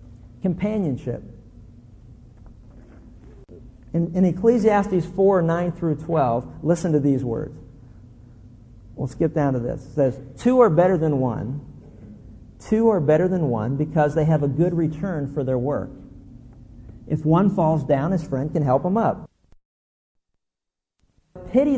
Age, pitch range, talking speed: 50-69, 125-185 Hz, 135 wpm